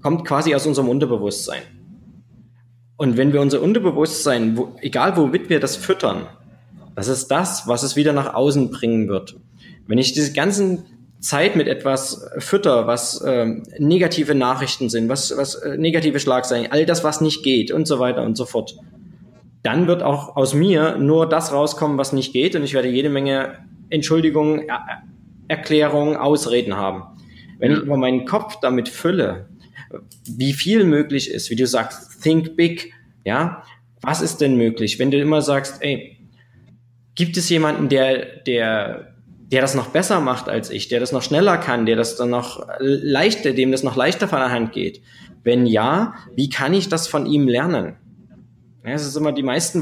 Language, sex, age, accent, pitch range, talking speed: German, male, 20-39, German, 125-160 Hz, 175 wpm